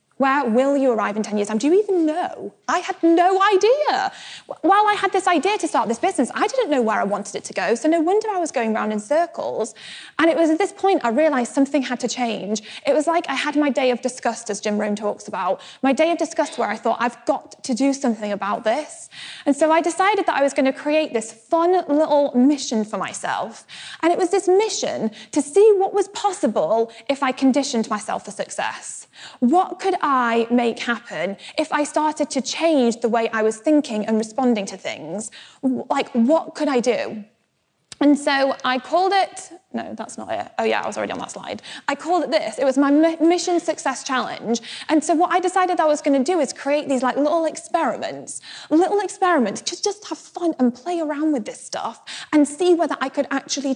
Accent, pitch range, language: British, 240-335 Hz, English